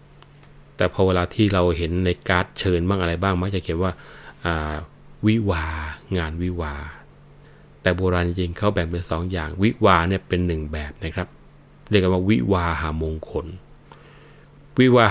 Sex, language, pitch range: male, Thai, 80-105 Hz